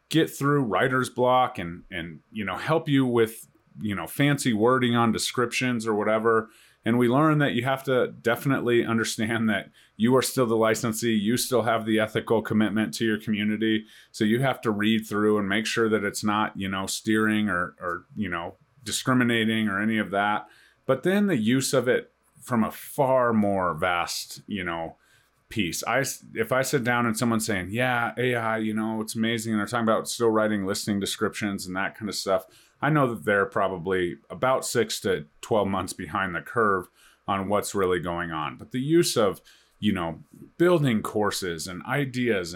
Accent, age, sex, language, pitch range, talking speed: American, 30-49, male, English, 105-125 Hz, 190 wpm